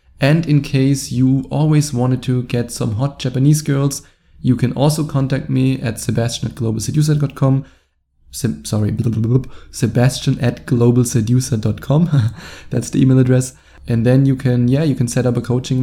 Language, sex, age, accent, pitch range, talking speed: English, male, 20-39, German, 110-130 Hz, 150 wpm